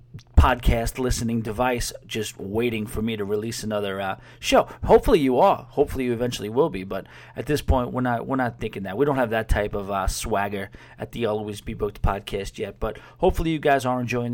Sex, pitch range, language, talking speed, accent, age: male, 115-140 Hz, English, 215 wpm, American, 40-59